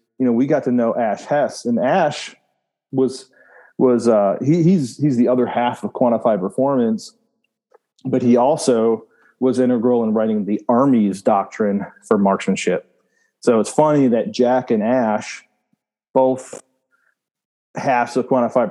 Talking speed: 145 wpm